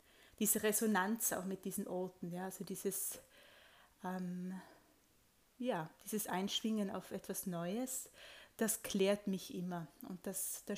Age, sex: 20-39, female